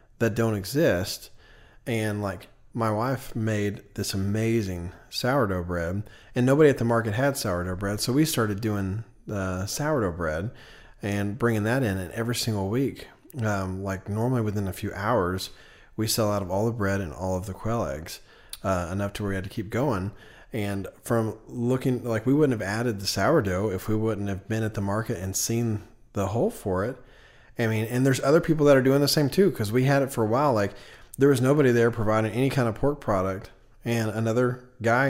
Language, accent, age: English, American, 40-59